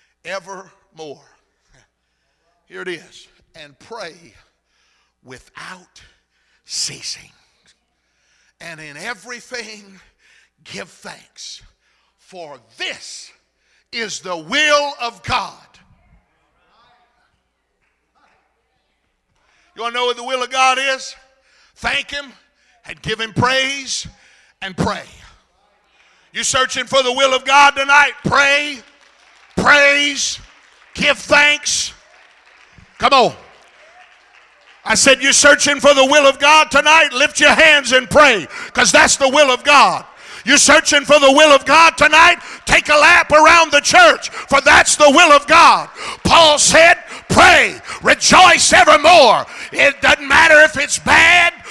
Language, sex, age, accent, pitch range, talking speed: English, male, 50-69, American, 260-305 Hz, 120 wpm